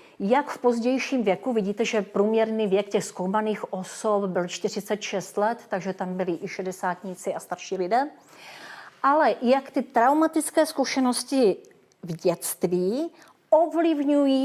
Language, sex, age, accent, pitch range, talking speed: Czech, female, 40-59, native, 190-240 Hz, 125 wpm